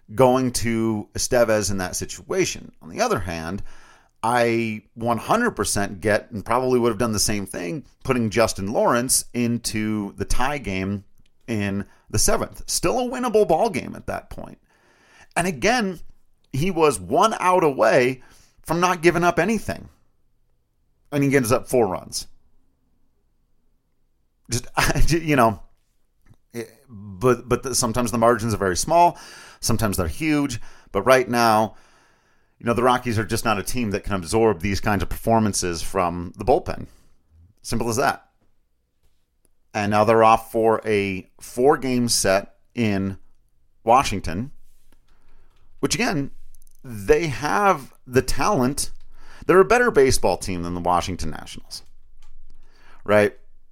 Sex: male